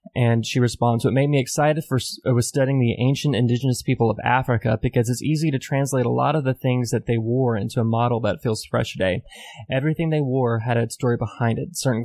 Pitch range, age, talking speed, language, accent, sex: 115-135 Hz, 20-39, 235 wpm, English, American, male